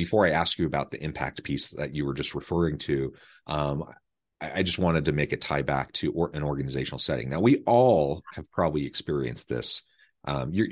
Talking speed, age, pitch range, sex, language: 200 wpm, 30-49, 70-90 Hz, male, English